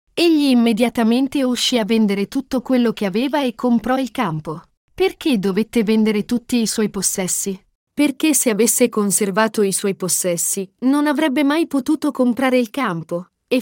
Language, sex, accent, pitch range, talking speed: Italian, female, native, 195-255 Hz, 155 wpm